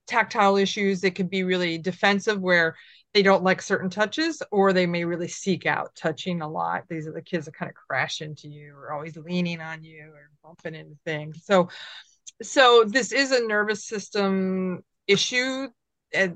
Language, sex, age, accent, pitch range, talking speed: English, female, 30-49, American, 165-195 Hz, 185 wpm